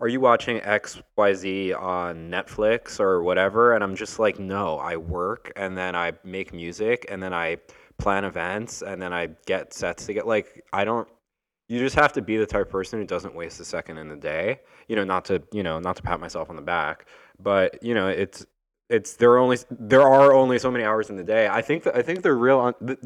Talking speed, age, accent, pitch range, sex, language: 235 wpm, 20-39, American, 85-110 Hz, male, English